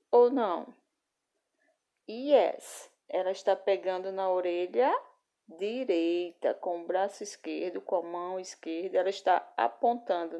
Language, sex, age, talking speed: Portuguese, female, 20-39, 115 wpm